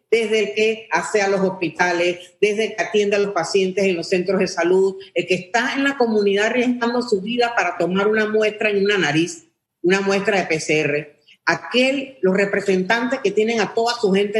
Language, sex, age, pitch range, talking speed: Spanish, female, 50-69, 180-230 Hz, 200 wpm